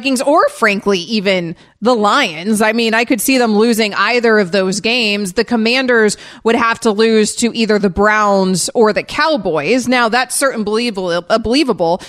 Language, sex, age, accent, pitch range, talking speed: English, female, 30-49, American, 200-240 Hz, 175 wpm